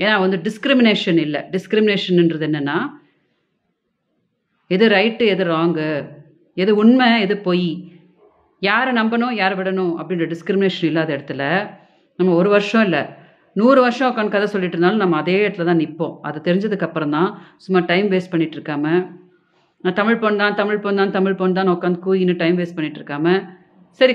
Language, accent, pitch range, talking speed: Tamil, native, 170-210 Hz, 145 wpm